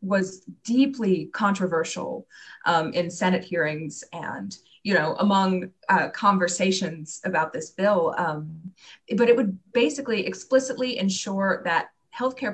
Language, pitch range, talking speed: English, 180-225 Hz, 120 wpm